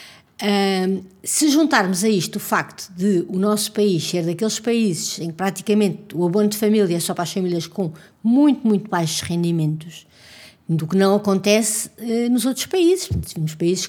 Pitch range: 190-245 Hz